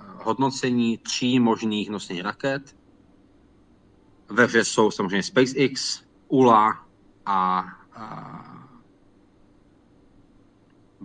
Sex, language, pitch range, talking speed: male, Czech, 105-125 Hz, 65 wpm